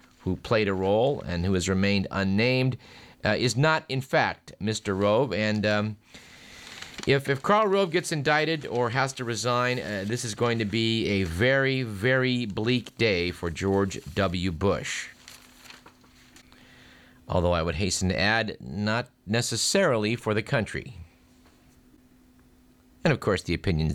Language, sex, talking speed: English, male, 150 wpm